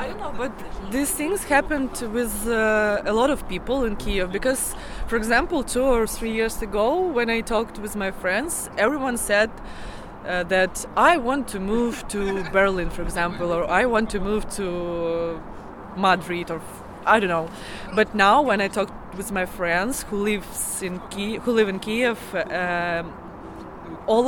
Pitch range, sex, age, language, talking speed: 190-230 Hz, female, 20-39, English, 175 wpm